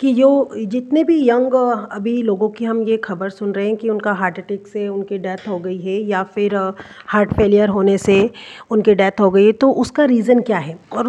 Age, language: 40-59, Hindi